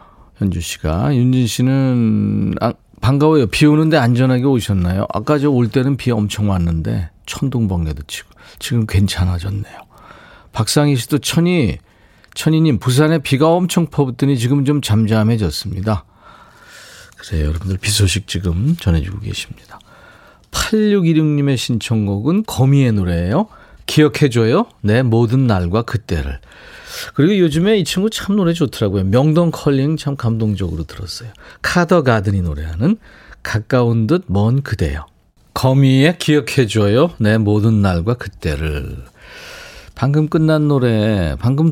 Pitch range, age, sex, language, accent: 100-145 Hz, 40-59, male, Korean, native